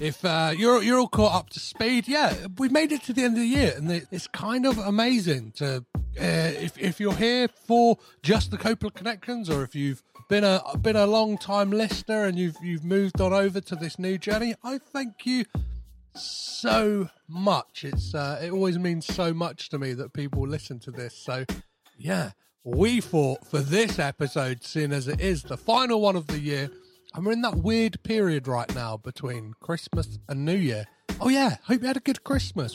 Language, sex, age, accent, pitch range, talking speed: English, male, 30-49, British, 135-220 Hz, 205 wpm